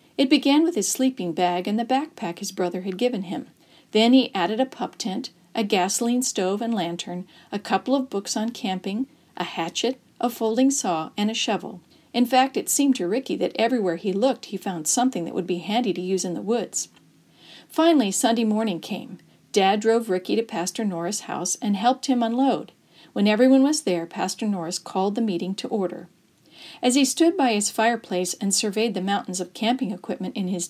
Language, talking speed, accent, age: English, 200 wpm, American, 50-69